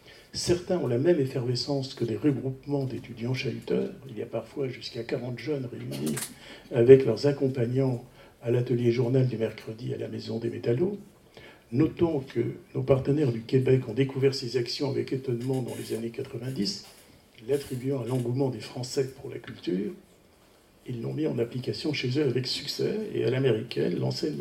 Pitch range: 115-140 Hz